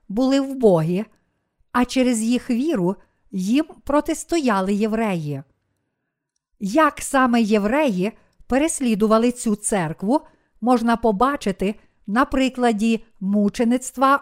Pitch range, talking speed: 210-255 Hz, 90 wpm